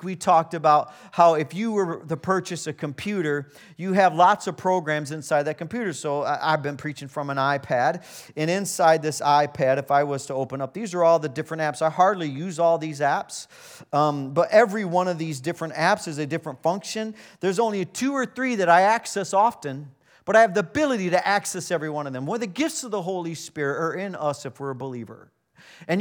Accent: American